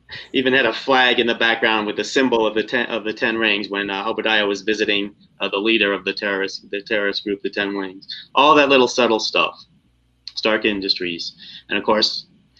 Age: 30-49